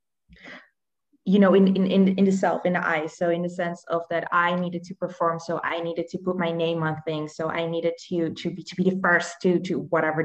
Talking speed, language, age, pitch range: 250 wpm, English, 20-39, 165-195 Hz